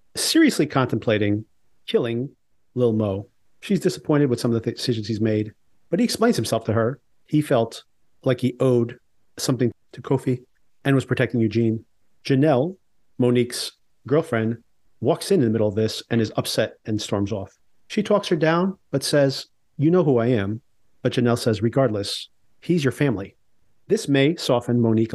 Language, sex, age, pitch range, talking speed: English, male, 40-59, 110-140 Hz, 170 wpm